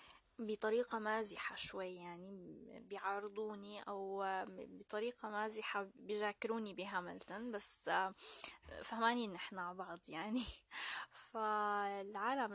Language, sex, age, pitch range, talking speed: Arabic, female, 10-29, 195-230 Hz, 80 wpm